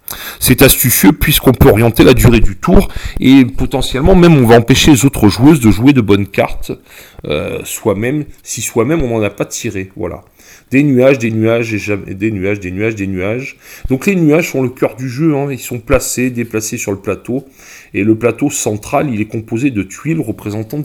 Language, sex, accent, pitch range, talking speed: French, male, French, 110-145 Hz, 200 wpm